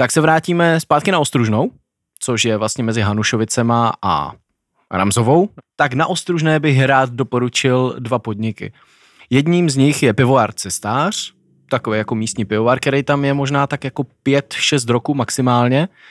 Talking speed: 150 wpm